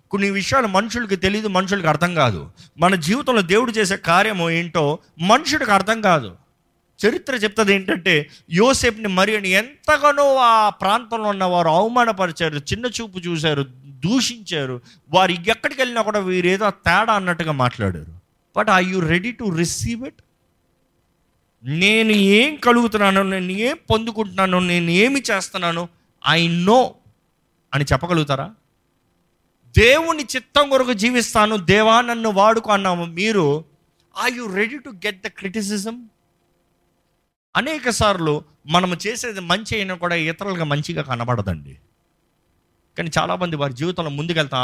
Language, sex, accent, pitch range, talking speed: Telugu, male, native, 130-215 Hz, 120 wpm